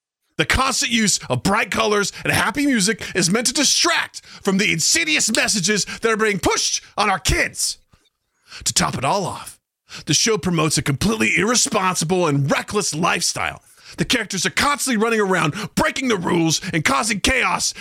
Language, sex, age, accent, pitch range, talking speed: English, male, 30-49, American, 190-270 Hz, 170 wpm